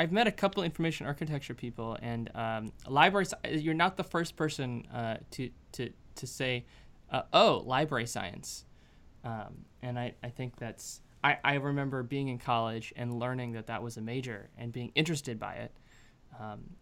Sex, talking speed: male, 175 wpm